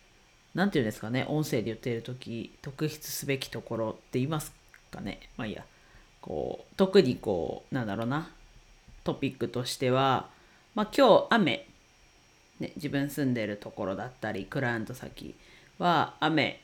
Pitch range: 125-170 Hz